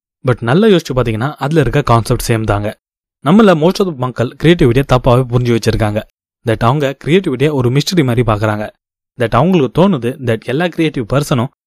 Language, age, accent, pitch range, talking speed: Tamil, 20-39, native, 115-150 Hz, 160 wpm